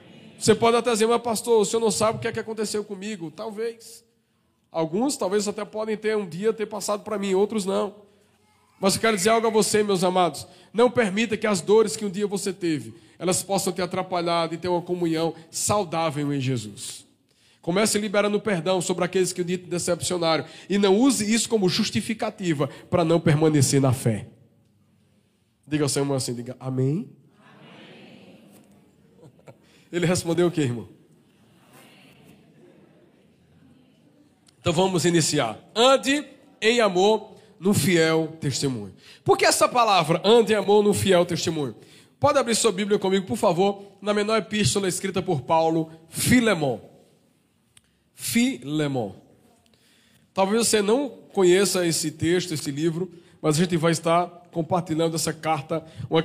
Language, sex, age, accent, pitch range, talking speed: Portuguese, male, 20-39, Brazilian, 160-210 Hz, 150 wpm